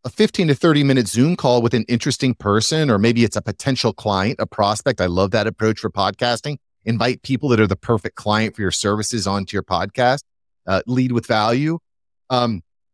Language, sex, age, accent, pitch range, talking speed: English, male, 30-49, American, 105-140 Hz, 200 wpm